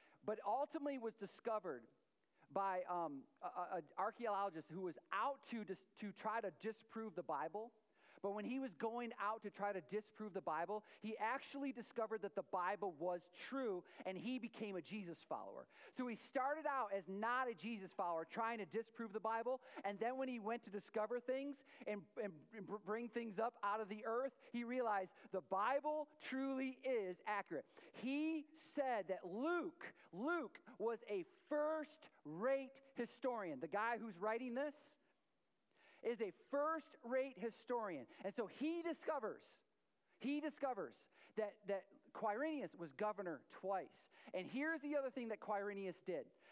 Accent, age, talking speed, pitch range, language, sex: American, 40-59, 155 wpm, 200-265 Hz, English, male